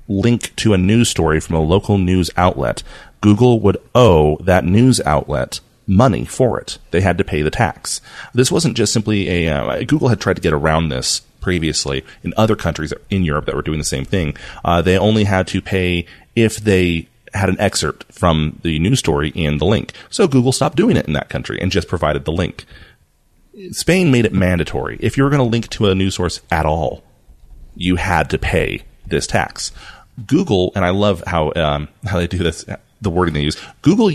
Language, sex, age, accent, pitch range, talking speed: English, male, 30-49, American, 80-110 Hz, 210 wpm